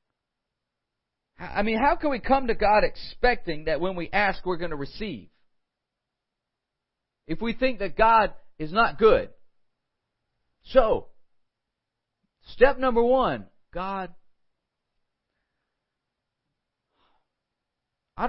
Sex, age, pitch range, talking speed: male, 50-69, 160-230 Hz, 100 wpm